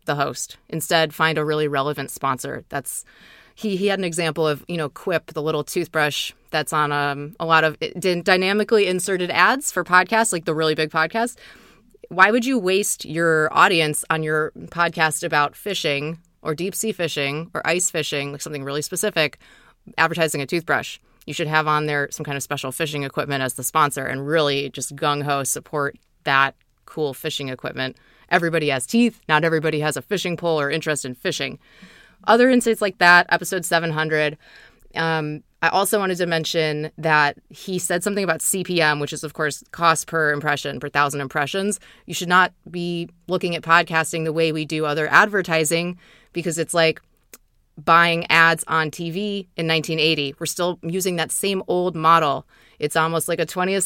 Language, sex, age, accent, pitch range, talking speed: English, female, 30-49, American, 150-180 Hz, 180 wpm